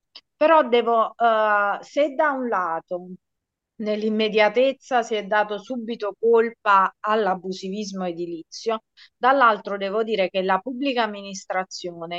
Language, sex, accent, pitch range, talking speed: Italian, female, native, 190-230 Hz, 110 wpm